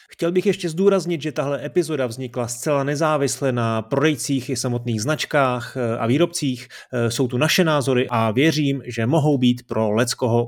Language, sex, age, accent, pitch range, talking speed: Czech, male, 30-49, native, 110-135 Hz, 160 wpm